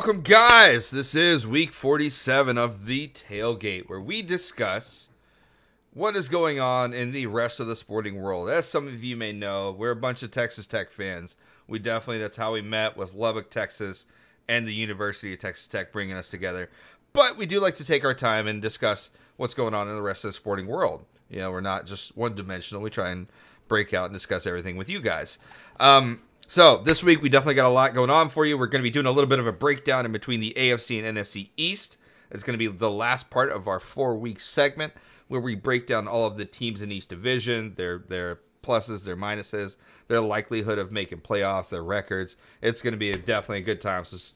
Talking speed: 225 wpm